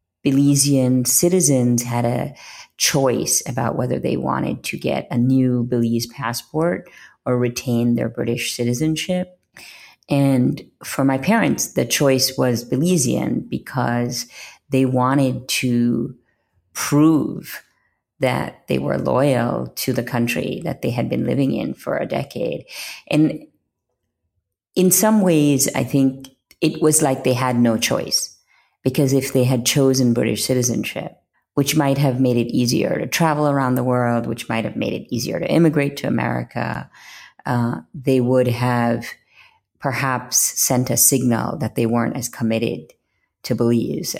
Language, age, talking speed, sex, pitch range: English, 40-59, 145 wpm, female, 120-140 Hz